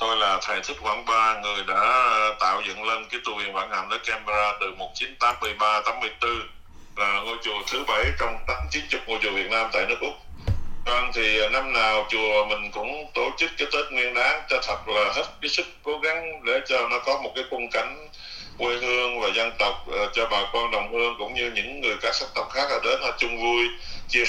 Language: Vietnamese